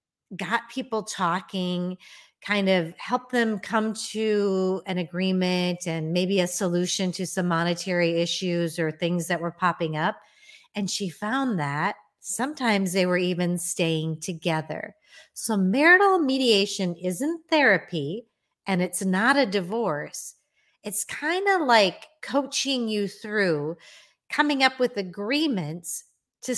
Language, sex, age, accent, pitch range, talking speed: English, female, 30-49, American, 180-245 Hz, 130 wpm